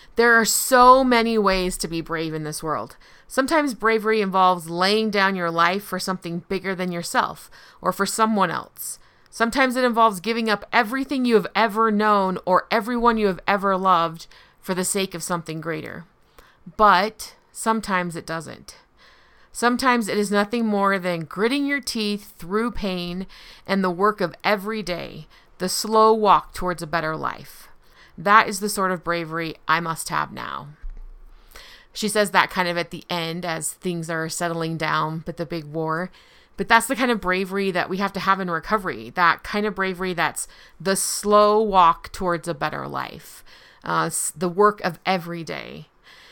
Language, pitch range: English, 170-215 Hz